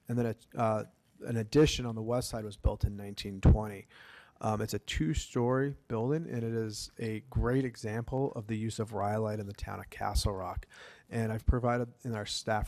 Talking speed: 195 wpm